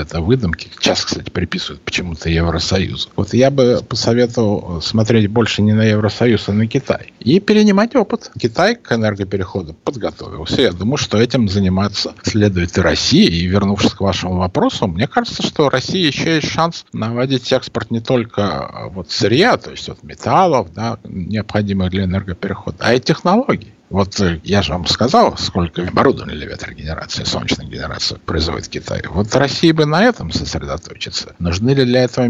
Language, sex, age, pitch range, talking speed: Russian, male, 50-69, 95-125 Hz, 160 wpm